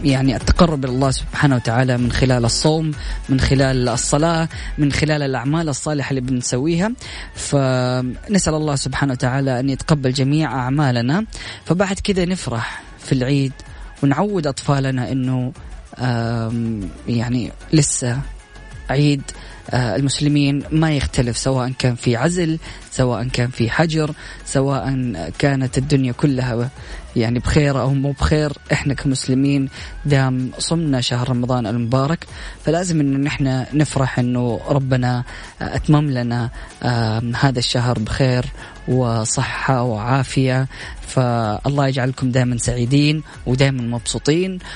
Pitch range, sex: 120-145 Hz, female